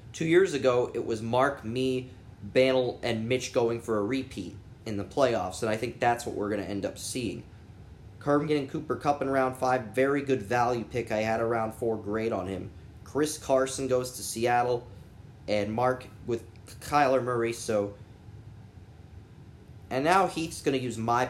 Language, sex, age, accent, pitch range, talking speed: English, male, 20-39, American, 105-135 Hz, 180 wpm